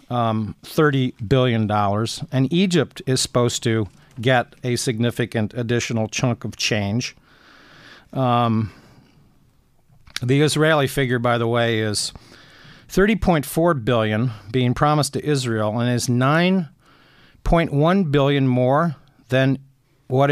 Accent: American